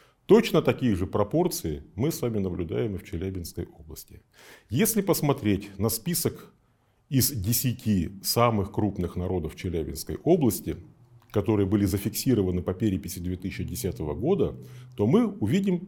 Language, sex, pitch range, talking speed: Russian, male, 100-135 Hz, 125 wpm